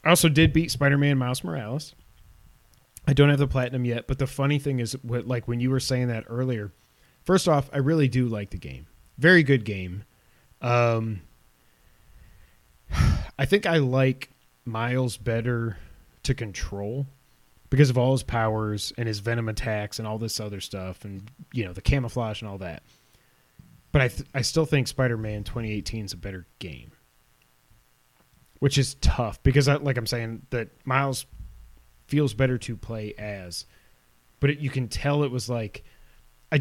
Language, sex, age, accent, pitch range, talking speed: English, male, 30-49, American, 100-135 Hz, 170 wpm